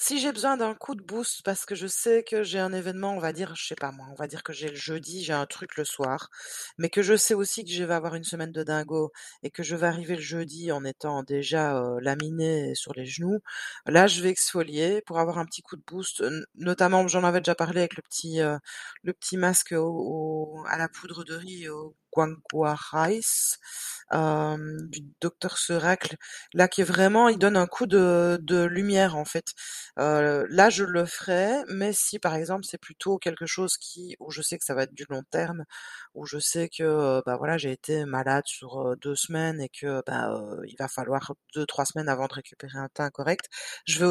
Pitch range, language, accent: 150-185 Hz, French, French